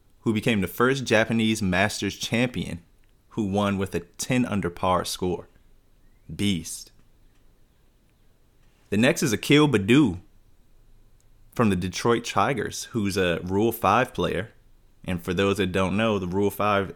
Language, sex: English, male